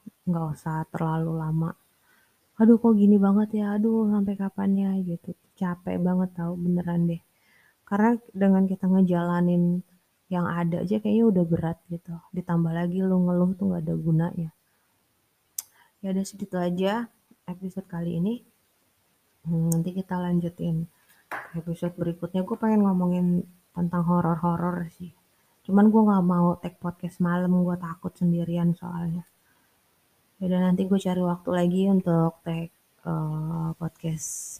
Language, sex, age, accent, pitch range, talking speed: Indonesian, female, 20-39, native, 170-200 Hz, 135 wpm